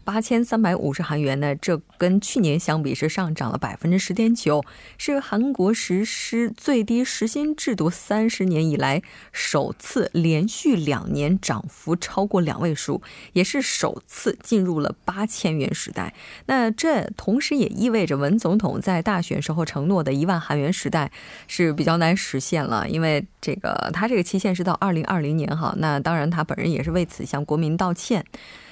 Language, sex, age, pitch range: Korean, female, 20-39, 160-225 Hz